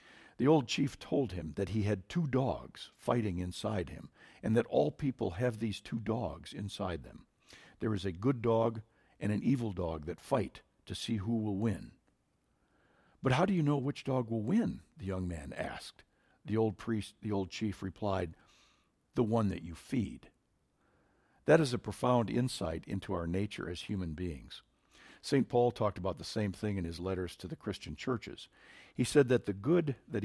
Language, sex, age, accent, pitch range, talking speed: English, male, 60-79, American, 95-120 Hz, 190 wpm